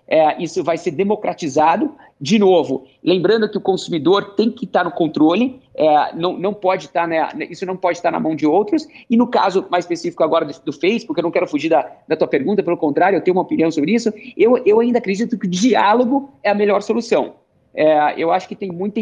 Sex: male